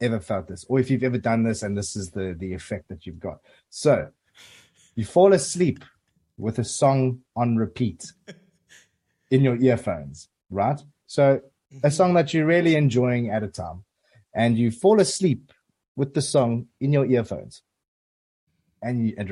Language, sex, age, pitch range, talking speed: English, male, 30-49, 100-135 Hz, 165 wpm